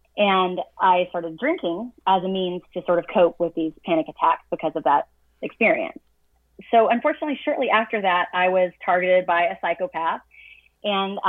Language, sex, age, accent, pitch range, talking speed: English, female, 30-49, American, 165-195 Hz, 165 wpm